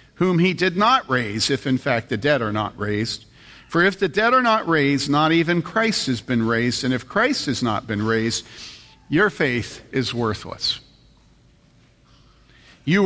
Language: English